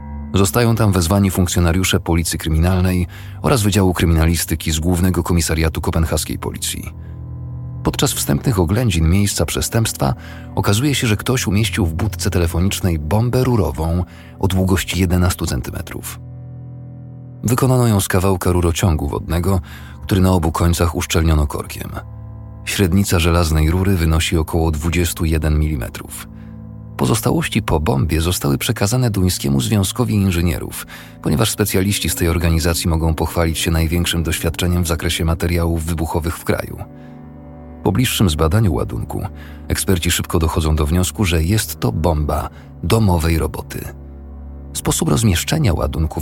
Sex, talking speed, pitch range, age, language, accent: male, 120 wpm, 80-100 Hz, 40-59, Polish, native